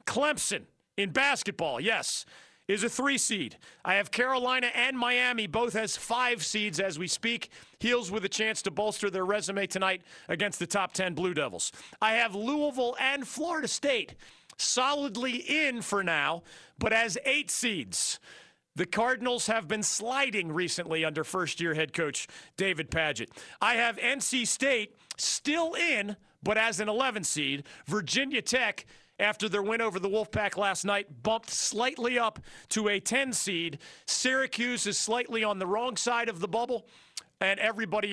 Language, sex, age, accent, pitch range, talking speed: English, male, 40-59, American, 175-235 Hz, 160 wpm